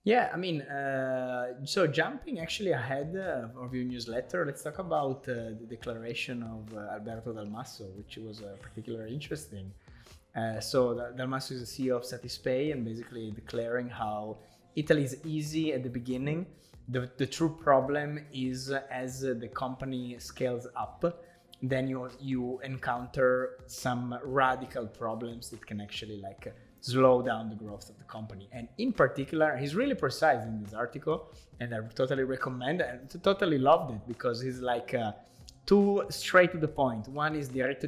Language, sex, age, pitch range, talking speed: English, male, 20-39, 120-140 Hz, 160 wpm